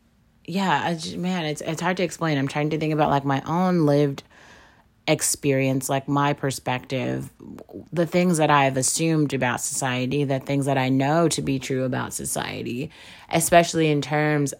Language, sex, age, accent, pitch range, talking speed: English, female, 30-49, American, 130-155 Hz, 175 wpm